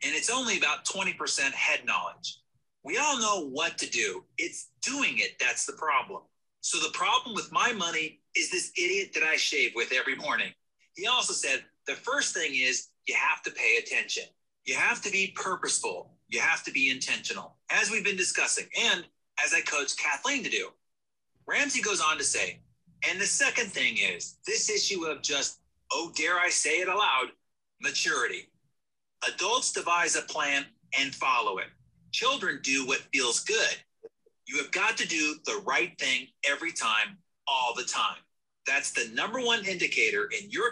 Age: 30-49